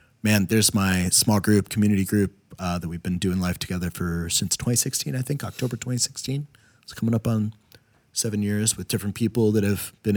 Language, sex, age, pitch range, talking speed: English, male, 30-49, 85-115 Hz, 195 wpm